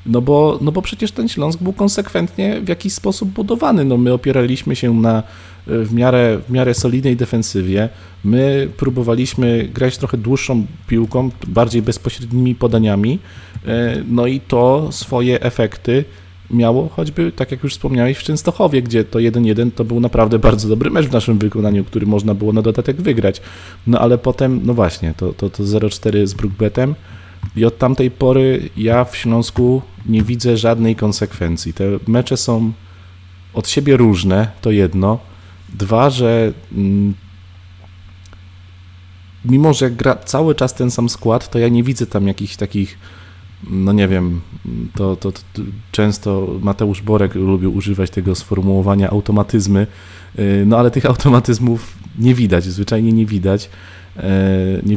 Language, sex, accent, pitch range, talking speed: Polish, male, native, 95-125 Hz, 145 wpm